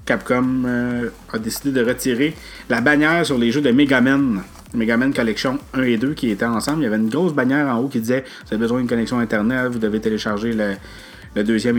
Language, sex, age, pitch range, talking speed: French, male, 30-49, 110-155 Hz, 225 wpm